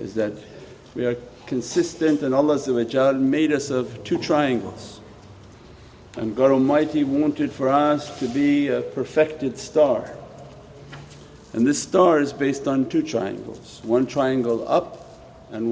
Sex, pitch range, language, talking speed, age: male, 120-150 Hz, English, 135 wpm, 50-69